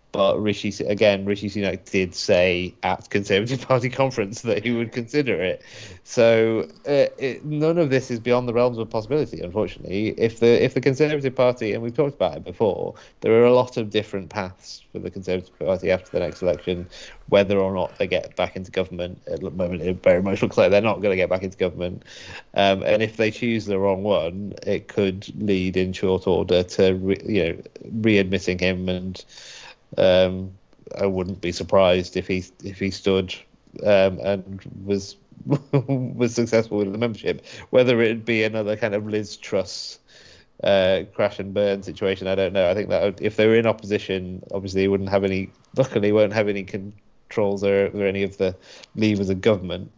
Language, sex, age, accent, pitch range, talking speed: English, male, 30-49, British, 95-115 Hz, 195 wpm